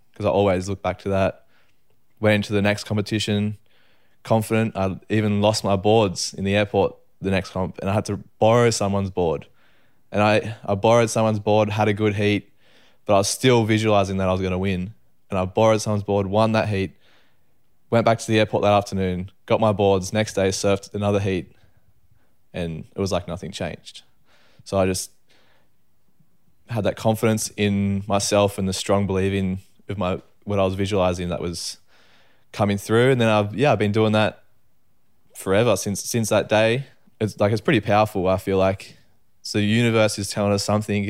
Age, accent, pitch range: 20-39, Australian, 95-110 Hz